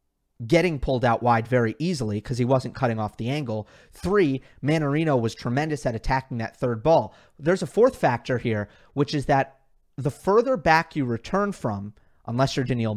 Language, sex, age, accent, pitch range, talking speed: English, male, 30-49, American, 120-150 Hz, 180 wpm